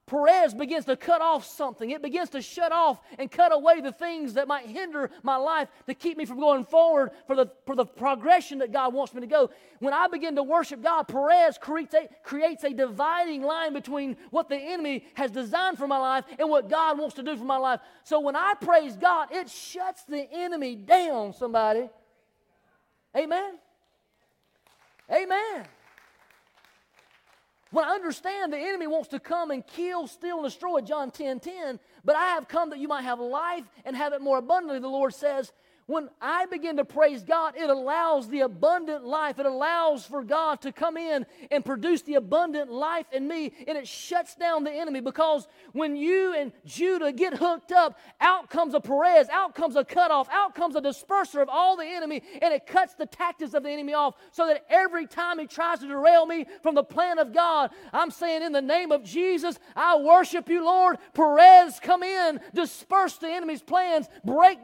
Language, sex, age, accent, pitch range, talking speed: English, male, 30-49, American, 280-340 Hz, 195 wpm